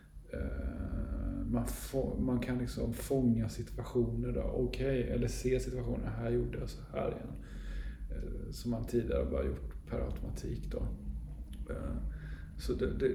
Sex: male